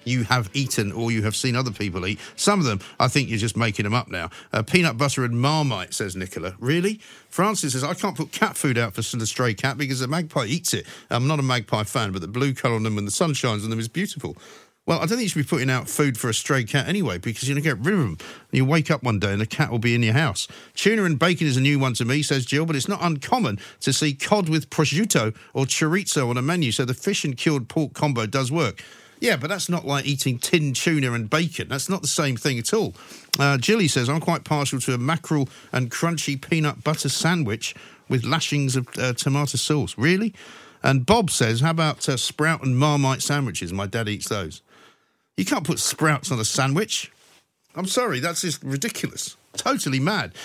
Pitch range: 120-160 Hz